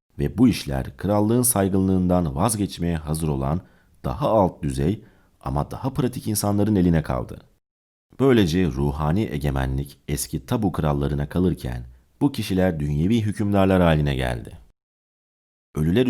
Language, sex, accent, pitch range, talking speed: Turkish, male, native, 70-100 Hz, 115 wpm